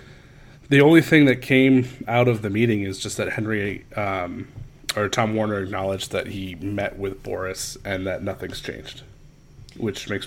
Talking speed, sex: 170 wpm, male